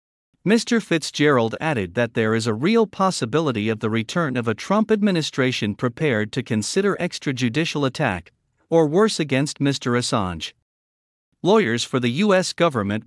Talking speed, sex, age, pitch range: 140 wpm, male, 50-69, 115-170 Hz